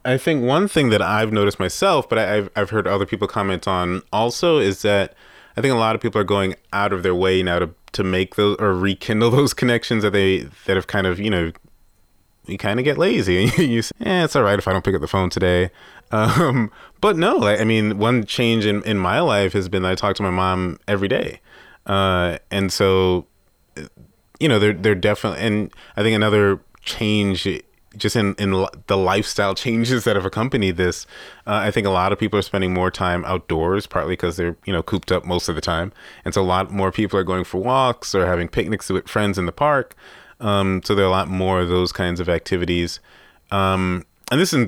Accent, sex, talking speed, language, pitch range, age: American, male, 230 wpm, English, 90-105 Hz, 20-39